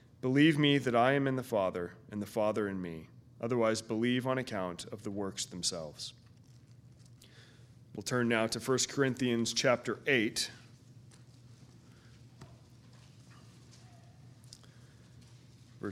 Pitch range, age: 115-130 Hz, 40-59